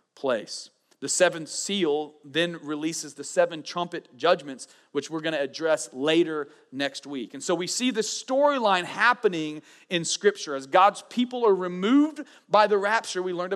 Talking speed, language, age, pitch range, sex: 165 wpm, English, 40-59, 155-205 Hz, male